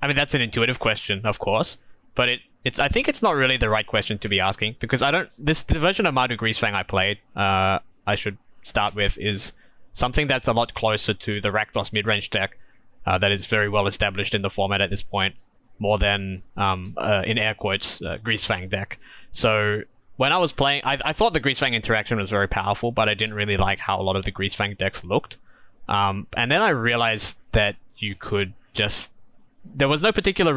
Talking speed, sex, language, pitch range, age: 220 wpm, male, English, 100-120 Hz, 20-39